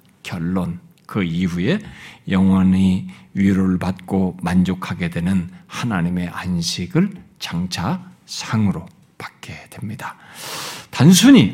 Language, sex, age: Korean, male, 50-69